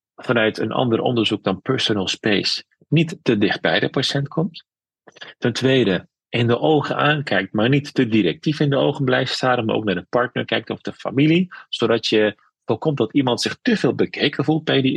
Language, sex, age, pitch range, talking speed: Dutch, male, 40-59, 115-150 Hz, 200 wpm